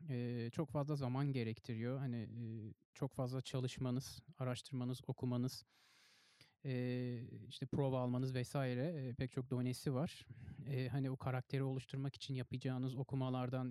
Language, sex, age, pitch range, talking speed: Turkish, male, 30-49, 125-145 Hz, 130 wpm